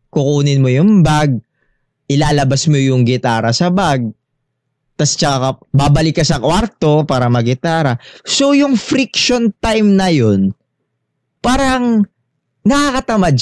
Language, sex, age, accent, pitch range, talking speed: English, male, 20-39, Filipino, 135-200 Hz, 115 wpm